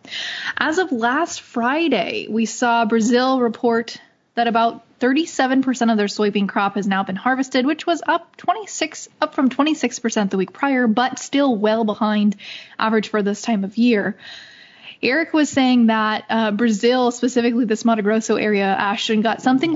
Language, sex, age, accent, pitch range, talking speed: English, female, 10-29, American, 215-265 Hz, 160 wpm